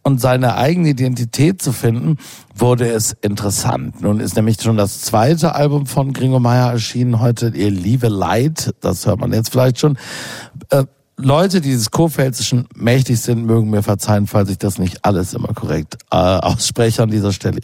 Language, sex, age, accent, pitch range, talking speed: German, male, 60-79, German, 120-175 Hz, 170 wpm